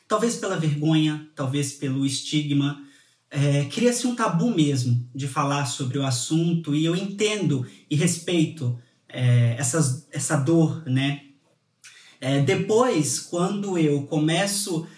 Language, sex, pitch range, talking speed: Portuguese, male, 140-185 Hz, 110 wpm